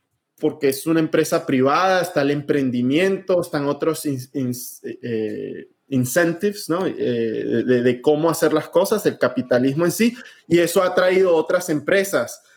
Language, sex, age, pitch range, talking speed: Spanish, male, 20-39, 150-200 Hz, 160 wpm